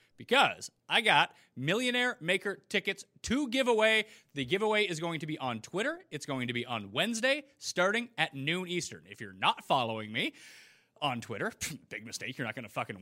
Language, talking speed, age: English, 190 wpm, 30-49